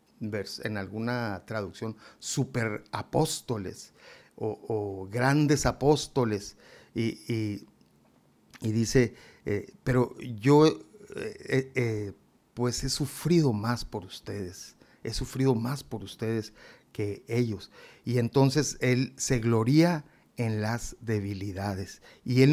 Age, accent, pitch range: 50-69, Mexican, 115-145 Hz